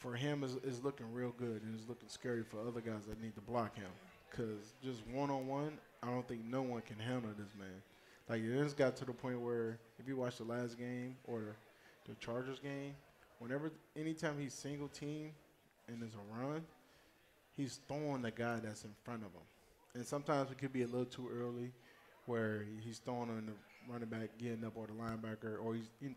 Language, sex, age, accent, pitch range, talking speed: English, male, 20-39, American, 115-130 Hz, 215 wpm